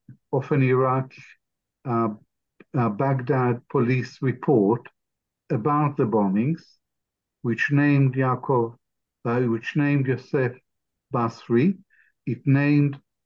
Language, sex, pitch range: English, male, 115-145 Hz